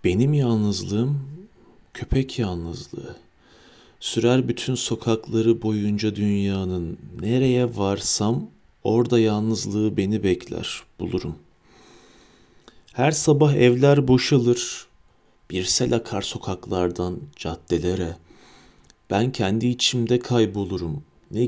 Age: 40-59